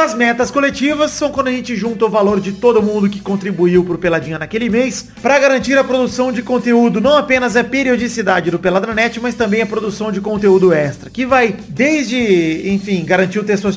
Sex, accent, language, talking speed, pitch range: male, Brazilian, Portuguese, 195 wpm, 190-250 Hz